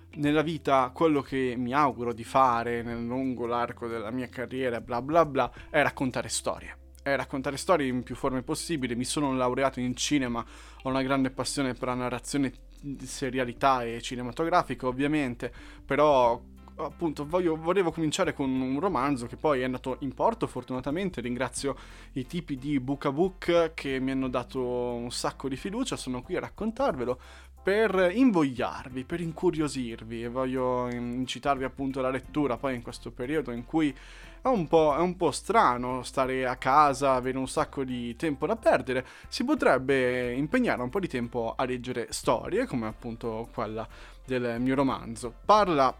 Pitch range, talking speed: 120-140 Hz, 165 wpm